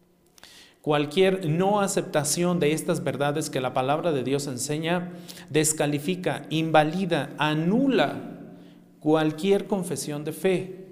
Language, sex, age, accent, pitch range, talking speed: Spanish, male, 40-59, Mexican, 150-185 Hz, 105 wpm